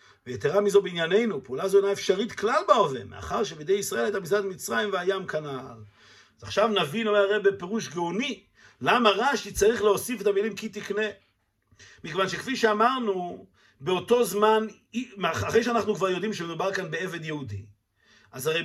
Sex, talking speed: male, 150 wpm